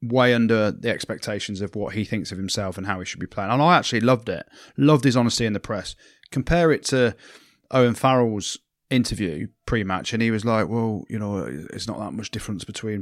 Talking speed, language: 215 wpm, English